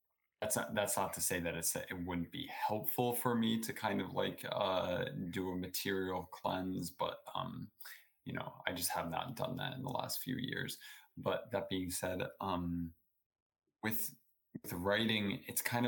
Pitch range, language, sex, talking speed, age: 90-110 Hz, English, male, 180 wpm, 20-39